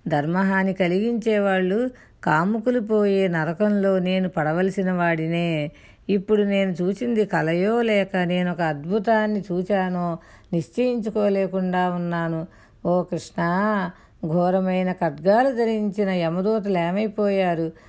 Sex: female